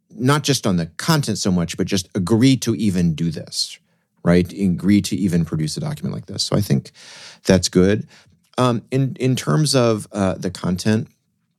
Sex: male